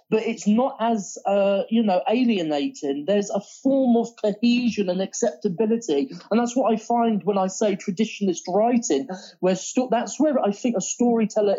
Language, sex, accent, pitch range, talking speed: English, male, British, 175-220 Hz, 170 wpm